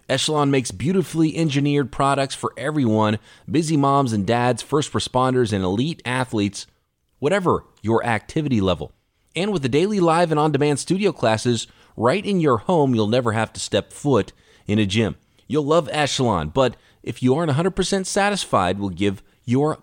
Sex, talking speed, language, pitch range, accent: male, 165 wpm, English, 110-155 Hz, American